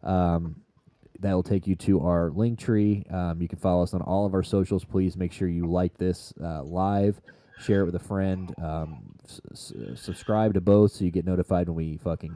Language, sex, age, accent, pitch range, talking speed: English, male, 20-39, American, 90-100 Hz, 205 wpm